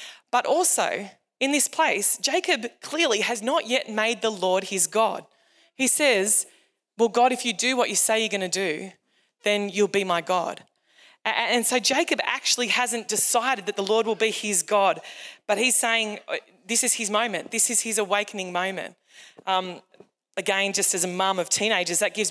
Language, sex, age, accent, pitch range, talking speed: English, female, 20-39, Australian, 195-240 Hz, 185 wpm